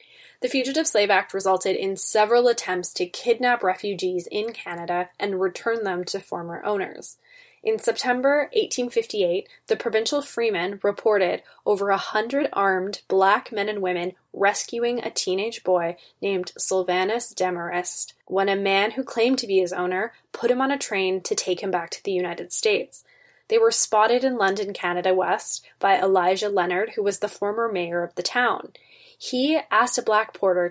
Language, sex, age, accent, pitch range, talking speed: English, female, 10-29, American, 185-245 Hz, 170 wpm